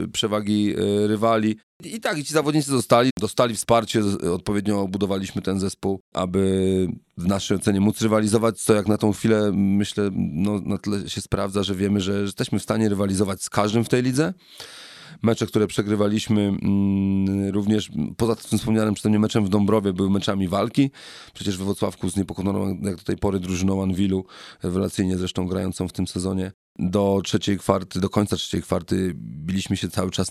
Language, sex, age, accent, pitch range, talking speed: Polish, male, 40-59, native, 95-110 Hz, 170 wpm